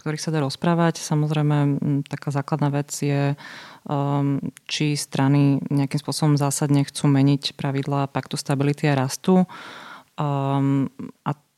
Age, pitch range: 30-49, 135-150 Hz